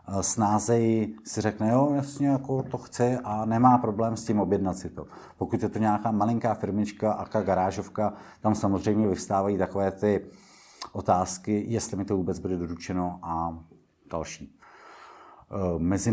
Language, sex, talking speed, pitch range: Czech, male, 140 wpm, 90-105 Hz